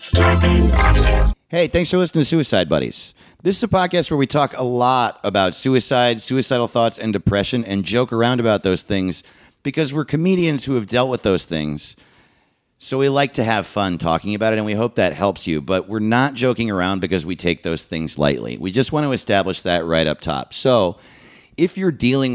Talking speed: 205 wpm